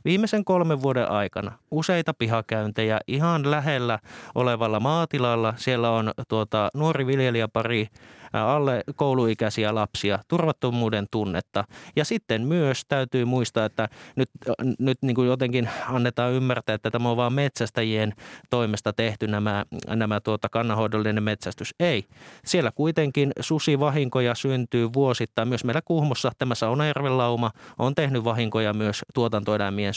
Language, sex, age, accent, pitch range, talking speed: Finnish, male, 30-49, native, 110-135 Hz, 125 wpm